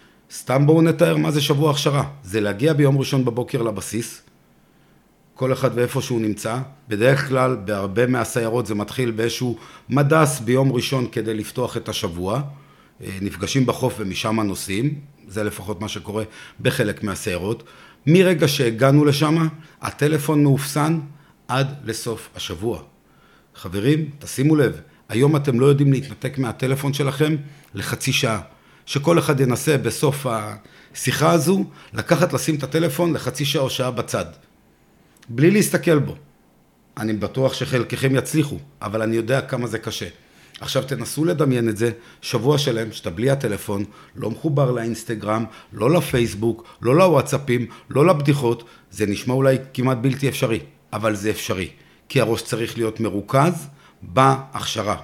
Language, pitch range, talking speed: Hebrew, 110-145 Hz, 135 wpm